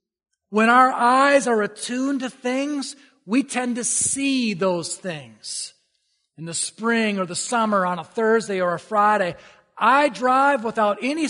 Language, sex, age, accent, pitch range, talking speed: English, male, 30-49, American, 175-230 Hz, 155 wpm